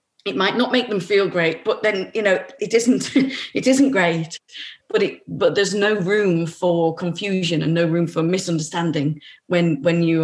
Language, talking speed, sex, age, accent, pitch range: English, 190 wpm, female, 40-59, British, 165-215 Hz